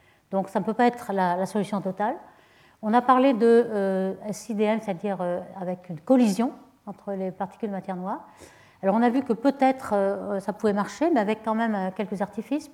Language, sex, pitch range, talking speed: French, female, 190-235 Hz, 205 wpm